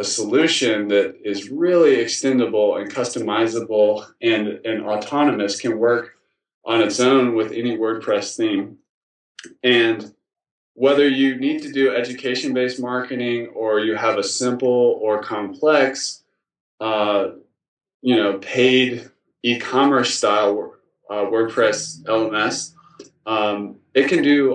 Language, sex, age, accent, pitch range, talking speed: English, male, 20-39, American, 110-135 Hz, 120 wpm